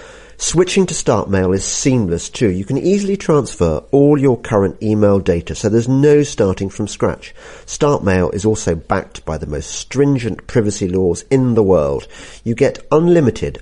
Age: 50-69